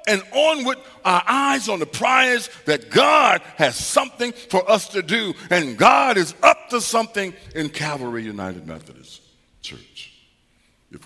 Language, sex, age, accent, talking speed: English, male, 60-79, American, 145 wpm